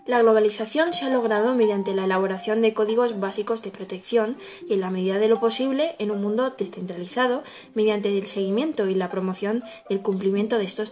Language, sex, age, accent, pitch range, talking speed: Spanish, female, 20-39, Spanish, 200-245 Hz, 185 wpm